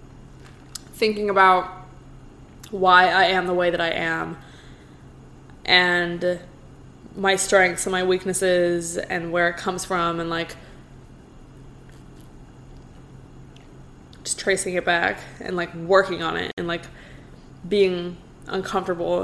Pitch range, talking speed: 175-205 Hz, 110 wpm